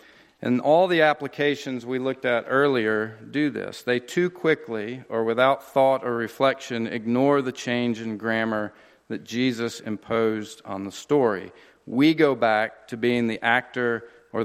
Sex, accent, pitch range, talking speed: male, American, 115-135 Hz, 155 wpm